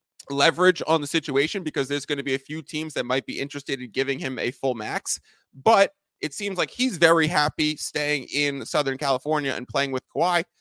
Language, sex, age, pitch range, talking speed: English, male, 30-49, 140-160 Hz, 210 wpm